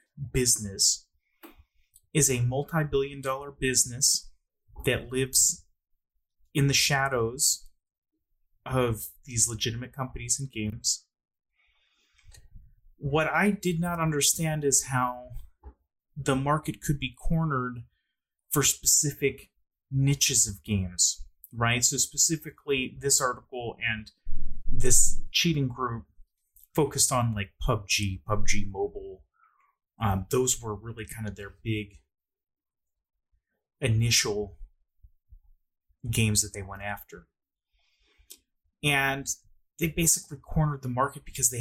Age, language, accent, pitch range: 30-49, English, American, 100-135 Hz